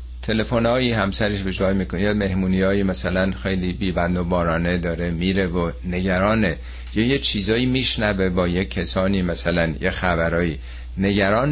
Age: 50-69